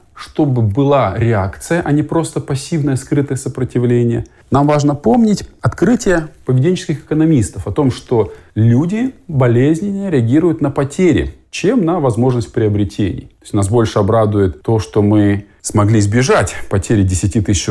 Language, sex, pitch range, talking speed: Russian, male, 100-130 Hz, 135 wpm